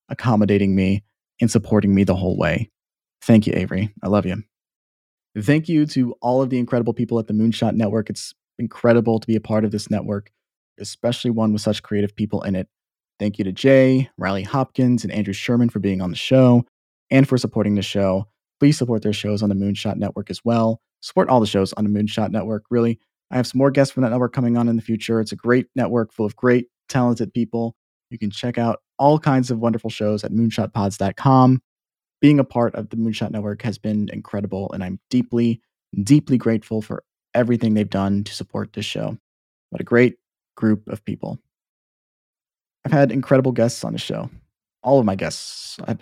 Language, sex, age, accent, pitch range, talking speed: English, male, 30-49, American, 105-120 Hz, 200 wpm